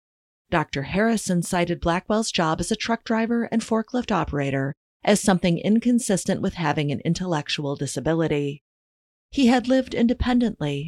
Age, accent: 30-49, American